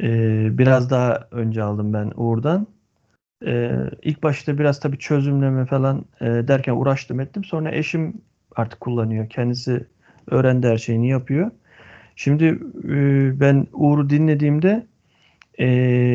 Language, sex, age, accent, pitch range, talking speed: Turkish, male, 40-59, native, 120-150 Hz, 125 wpm